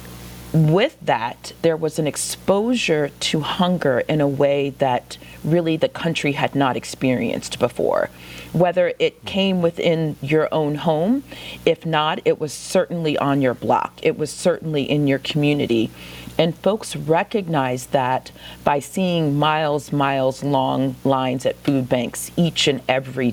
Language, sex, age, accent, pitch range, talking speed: English, female, 40-59, American, 135-175 Hz, 145 wpm